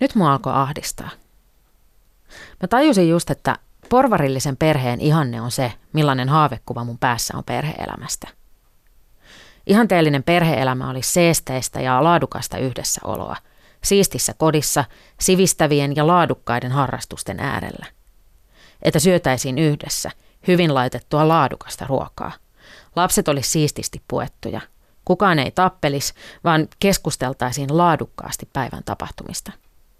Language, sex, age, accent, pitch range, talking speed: Finnish, female, 30-49, native, 130-165 Hz, 105 wpm